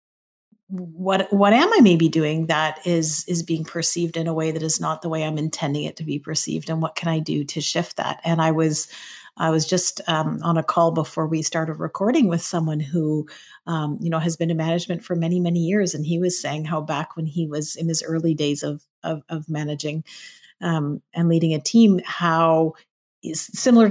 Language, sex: English, female